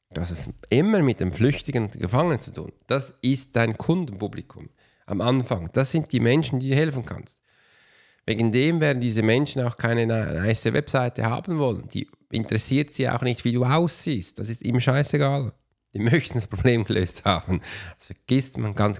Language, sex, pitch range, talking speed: German, male, 100-135 Hz, 185 wpm